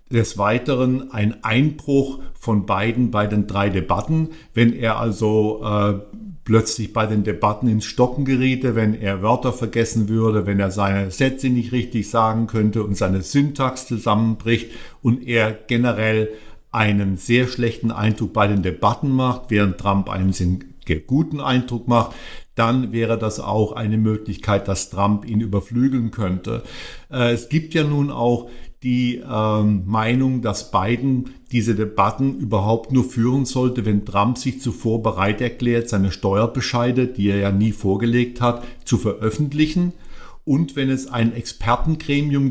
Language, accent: German, German